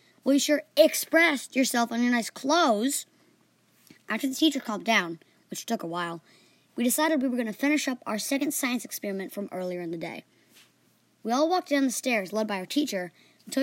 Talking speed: 205 wpm